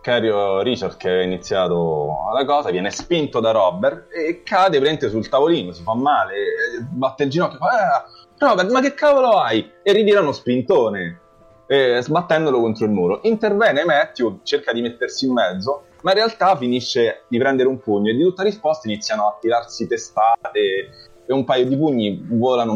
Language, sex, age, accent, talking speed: Italian, male, 30-49, native, 180 wpm